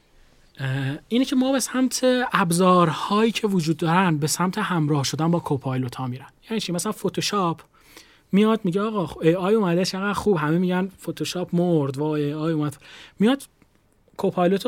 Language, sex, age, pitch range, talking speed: Persian, male, 30-49, 155-190 Hz, 160 wpm